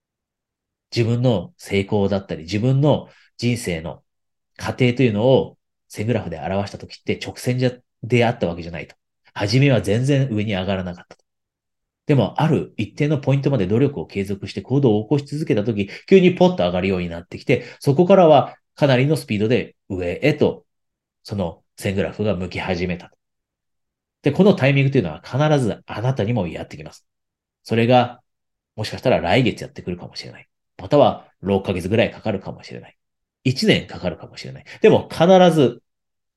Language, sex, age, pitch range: Japanese, male, 40-59, 95-135 Hz